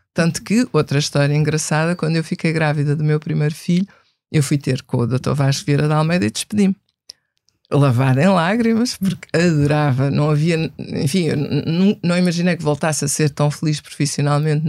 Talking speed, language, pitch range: 170 wpm, Portuguese, 150-205 Hz